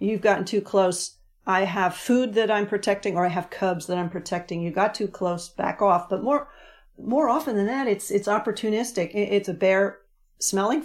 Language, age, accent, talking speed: English, 40-59, American, 200 wpm